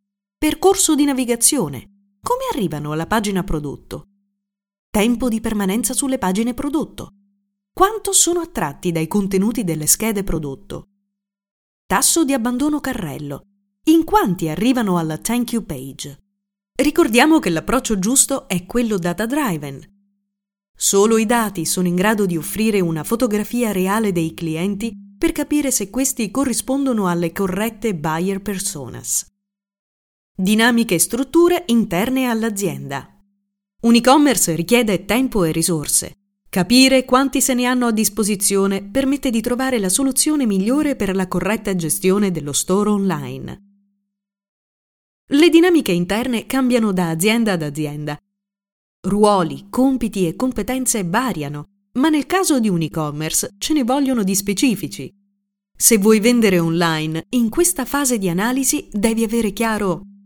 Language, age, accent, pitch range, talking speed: Italian, 30-49, native, 185-250 Hz, 130 wpm